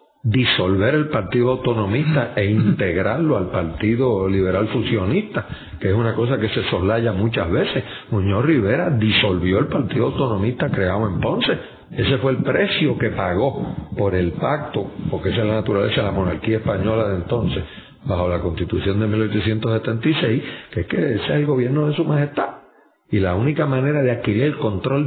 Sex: male